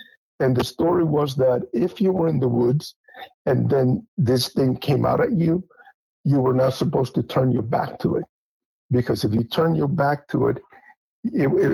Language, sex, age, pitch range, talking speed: English, male, 50-69, 125-155 Hz, 195 wpm